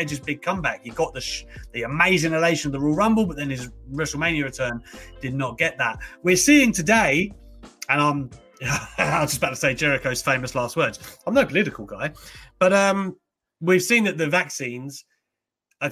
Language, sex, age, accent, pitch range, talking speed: English, male, 30-49, British, 135-175 Hz, 190 wpm